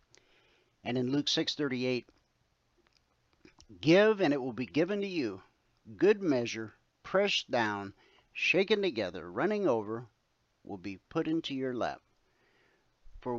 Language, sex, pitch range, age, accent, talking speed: English, male, 115-170 Hz, 50-69, American, 120 wpm